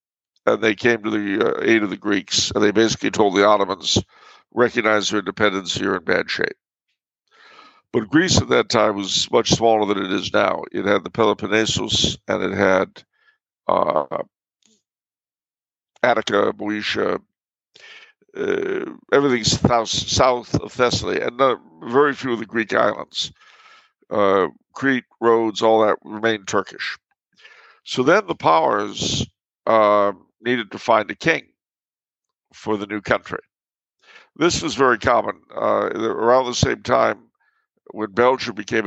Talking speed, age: 135 wpm, 60-79